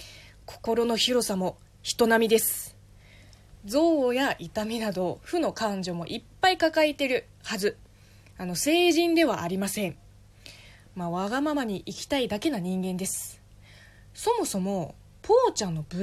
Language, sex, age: Japanese, female, 20-39